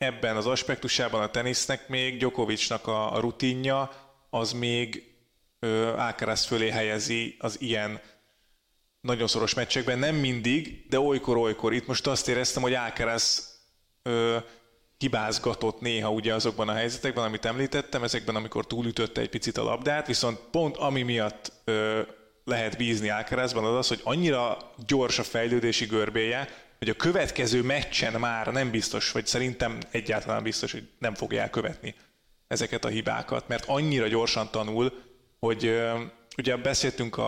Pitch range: 110-125 Hz